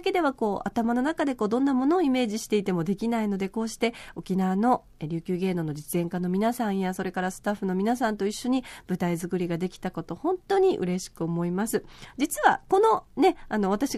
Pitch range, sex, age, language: 185-270 Hz, female, 40-59, Japanese